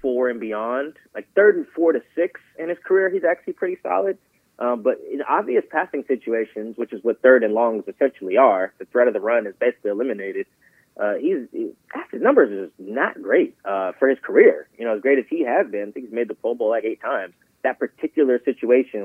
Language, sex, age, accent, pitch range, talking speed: English, male, 30-49, American, 105-135 Hz, 225 wpm